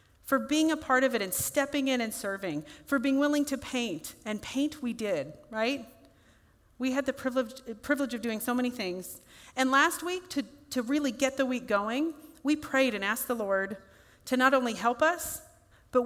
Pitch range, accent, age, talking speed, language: 205-265 Hz, American, 40-59, 200 wpm, English